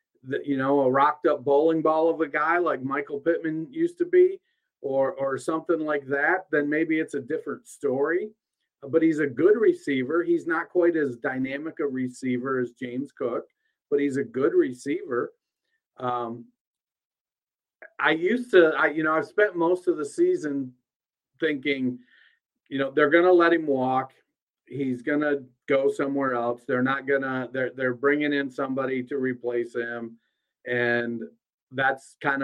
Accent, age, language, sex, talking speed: American, 50-69, English, male, 165 wpm